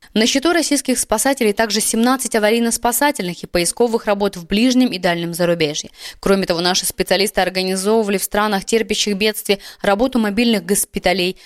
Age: 20-39